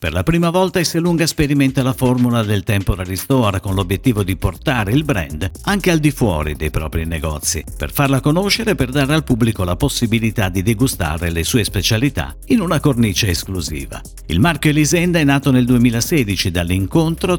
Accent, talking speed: native, 180 wpm